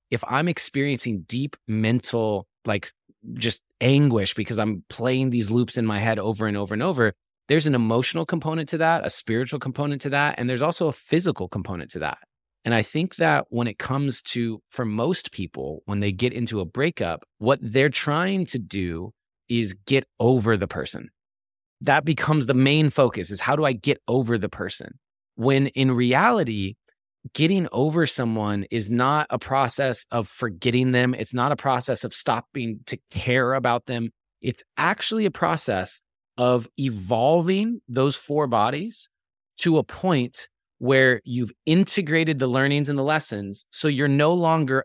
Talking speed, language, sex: 170 wpm, English, male